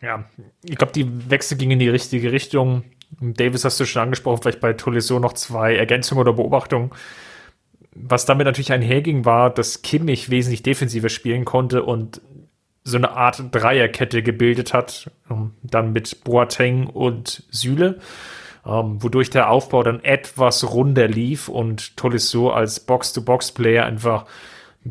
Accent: German